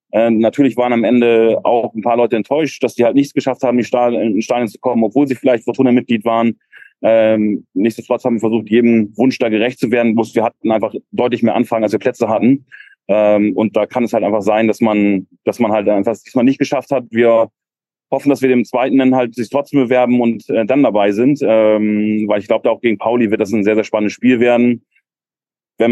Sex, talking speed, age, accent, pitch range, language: male, 230 wpm, 30-49, German, 110-125 Hz, German